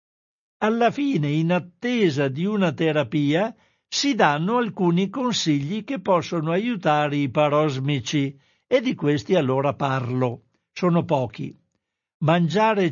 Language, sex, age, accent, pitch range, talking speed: Italian, male, 60-79, native, 155-190 Hz, 110 wpm